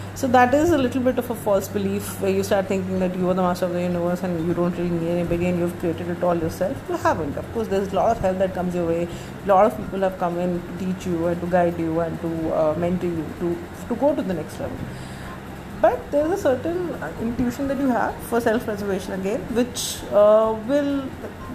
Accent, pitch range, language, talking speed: Indian, 180-235 Hz, English, 250 wpm